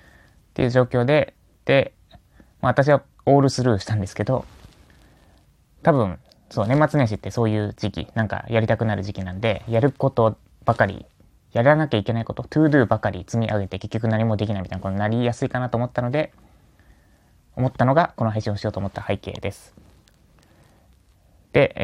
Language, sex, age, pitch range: Japanese, male, 20-39, 100-130 Hz